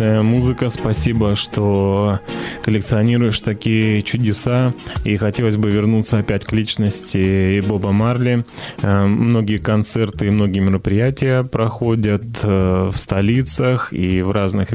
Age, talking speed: 20-39, 110 wpm